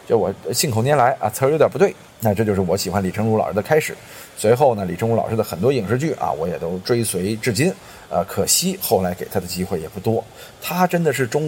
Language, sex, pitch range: Chinese, male, 95-135 Hz